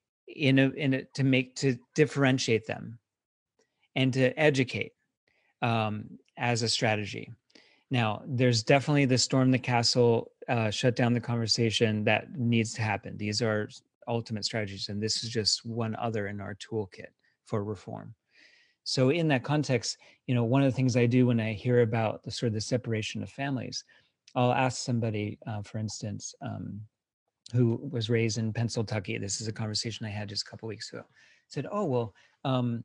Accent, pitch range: American, 110-130 Hz